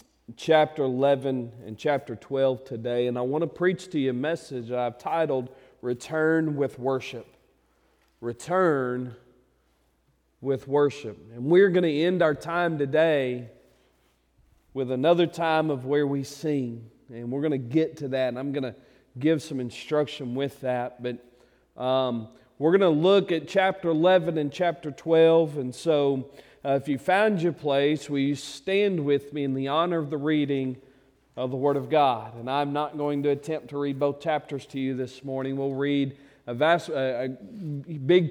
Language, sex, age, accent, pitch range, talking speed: English, male, 40-59, American, 130-160 Hz, 175 wpm